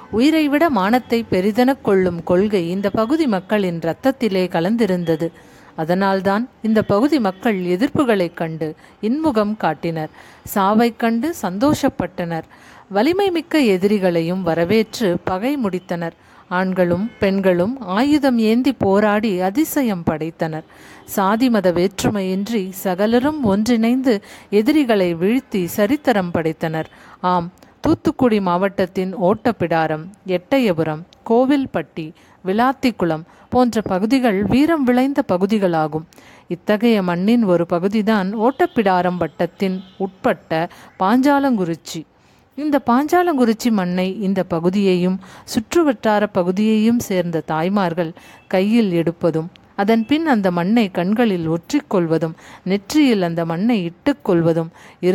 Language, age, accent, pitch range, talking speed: English, 50-69, Indian, 180-240 Hz, 85 wpm